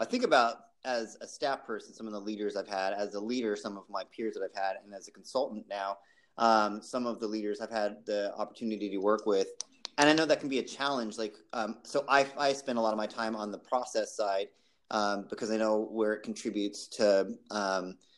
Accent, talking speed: American, 240 wpm